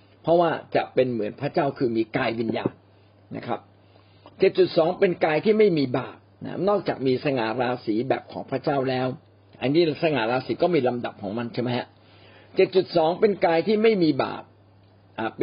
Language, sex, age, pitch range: Thai, male, 60-79, 105-160 Hz